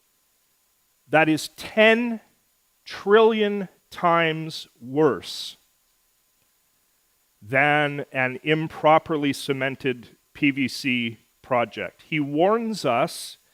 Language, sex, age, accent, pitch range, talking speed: English, male, 40-59, American, 125-170 Hz, 65 wpm